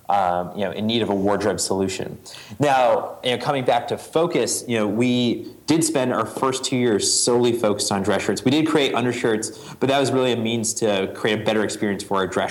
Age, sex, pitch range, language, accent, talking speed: 30-49, male, 100-120 Hz, English, American, 230 wpm